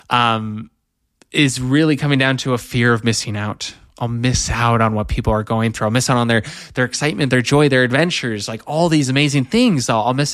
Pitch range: 115-155 Hz